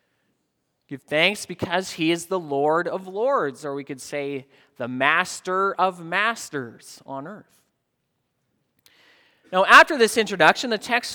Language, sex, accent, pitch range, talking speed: English, male, American, 150-215 Hz, 135 wpm